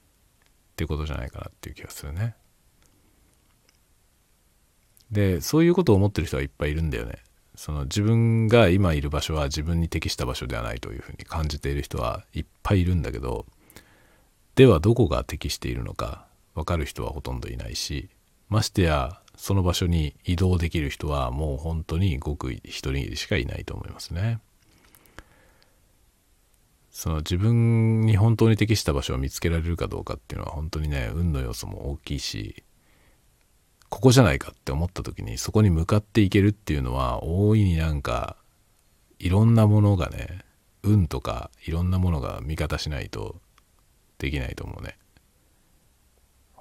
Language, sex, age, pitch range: Japanese, male, 40-59, 75-105 Hz